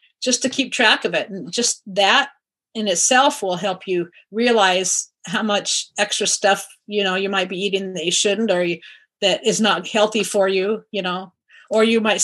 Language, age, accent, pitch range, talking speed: English, 40-59, American, 190-230 Hz, 200 wpm